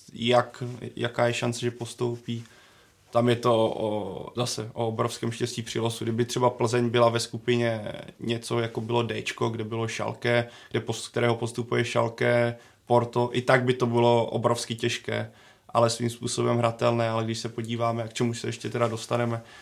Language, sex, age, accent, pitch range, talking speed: Czech, male, 20-39, native, 115-120 Hz, 165 wpm